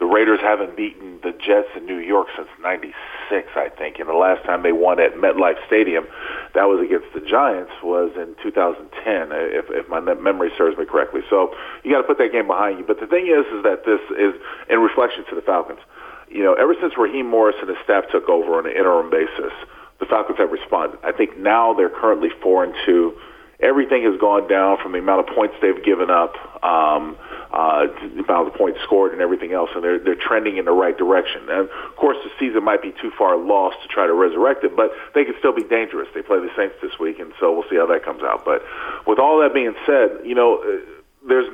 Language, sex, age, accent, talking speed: English, male, 40-59, American, 235 wpm